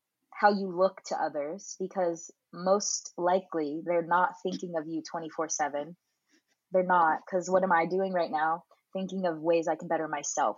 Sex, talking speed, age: female, 175 wpm, 20-39